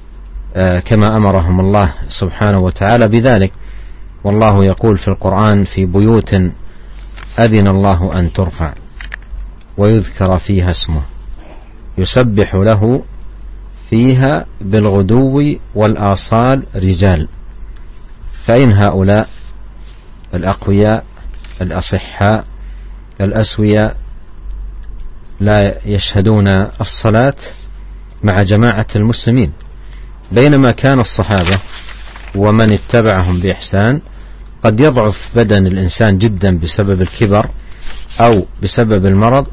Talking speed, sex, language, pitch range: 80 wpm, male, Indonesian, 95-110 Hz